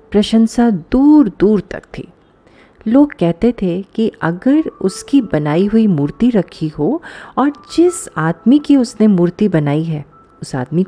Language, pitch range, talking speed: Hindi, 155-250 Hz, 145 wpm